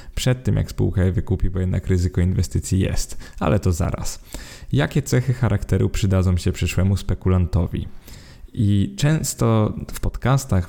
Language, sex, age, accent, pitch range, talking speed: Polish, male, 20-39, native, 95-110 Hz, 140 wpm